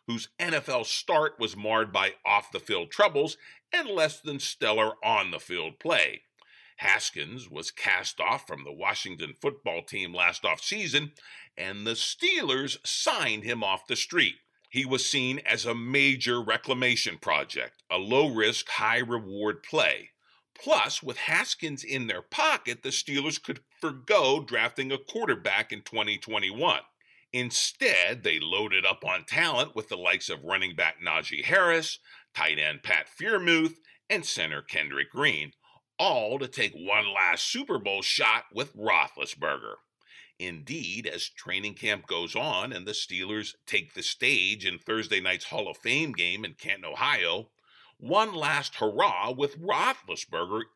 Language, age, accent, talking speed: English, 50-69, American, 140 wpm